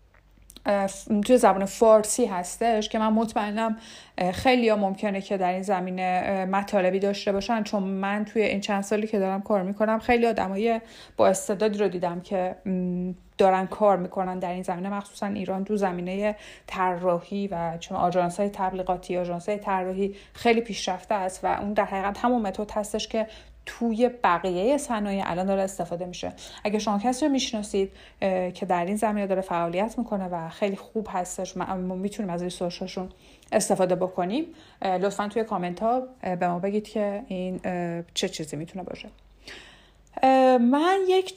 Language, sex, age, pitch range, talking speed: Persian, female, 30-49, 185-220 Hz, 155 wpm